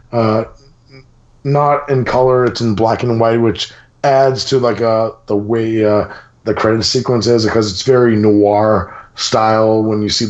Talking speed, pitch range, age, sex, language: 170 wpm, 110-125 Hz, 30-49, male, English